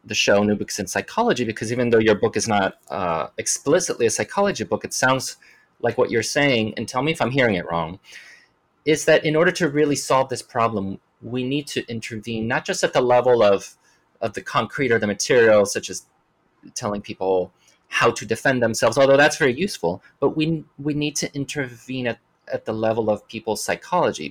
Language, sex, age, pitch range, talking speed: English, male, 30-49, 105-145 Hz, 200 wpm